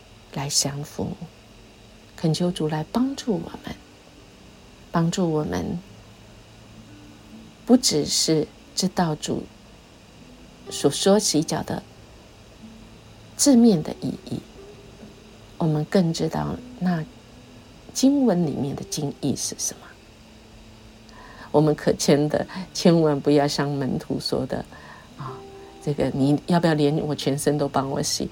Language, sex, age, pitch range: Chinese, female, 50-69, 110-160 Hz